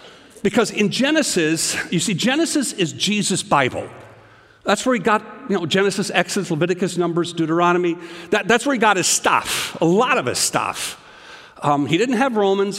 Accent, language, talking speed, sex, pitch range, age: American, English, 170 wpm, male, 170-230 Hz, 50-69